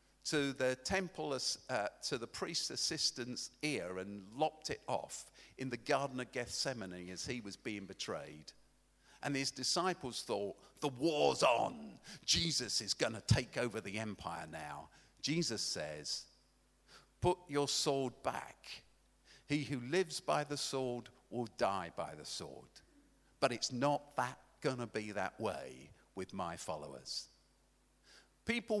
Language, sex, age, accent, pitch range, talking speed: English, male, 50-69, British, 110-175 Hz, 145 wpm